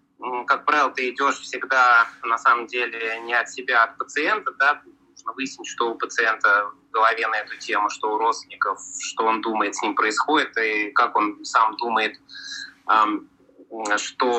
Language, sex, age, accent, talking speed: Russian, male, 20-39, native, 165 wpm